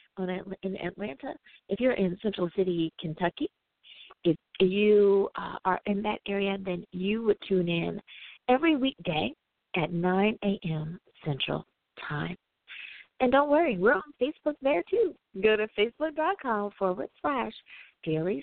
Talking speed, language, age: 135 wpm, English, 40-59